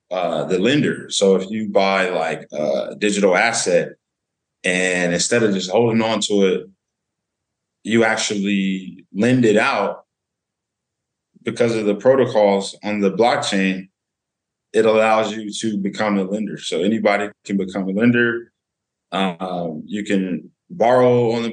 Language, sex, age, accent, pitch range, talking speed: English, male, 20-39, American, 95-115 Hz, 140 wpm